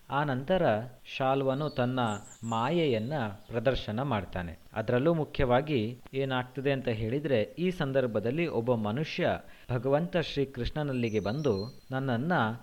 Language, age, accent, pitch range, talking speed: Kannada, 30-49, native, 115-150 Hz, 95 wpm